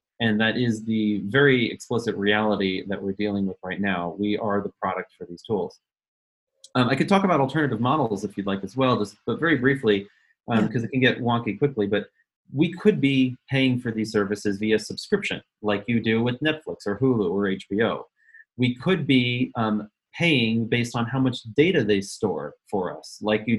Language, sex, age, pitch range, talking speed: English, male, 30-49, 105-130 Hz, 200 wpm